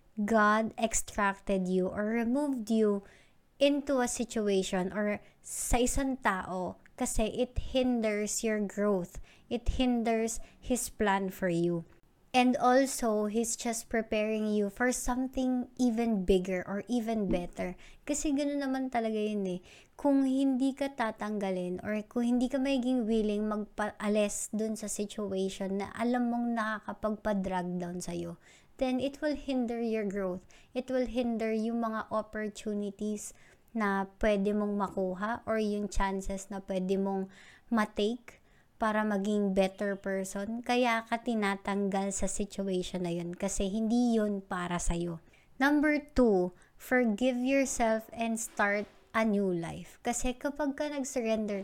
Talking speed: 135 wpm